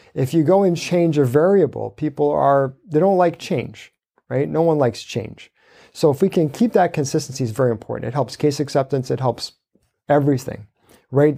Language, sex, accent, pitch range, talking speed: English, male, American, 130-170 Hz, 190 wpm